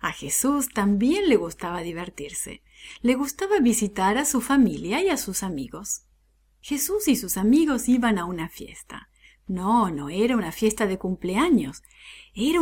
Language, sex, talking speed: English, female, 150 wpm